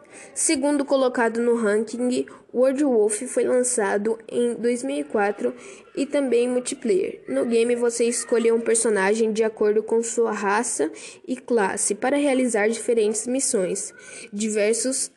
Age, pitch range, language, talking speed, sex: 10-29, 225-265 Hz, Portuguese, 125 wpm, female